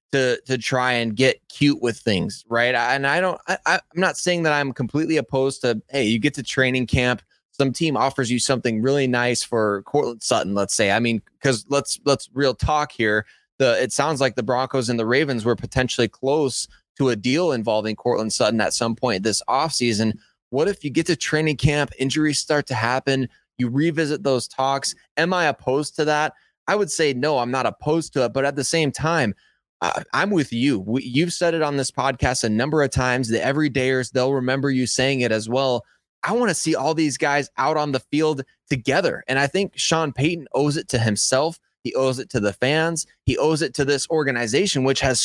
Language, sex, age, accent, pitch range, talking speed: English, male, 20-39, American, 125-155 Hz, 215 wpm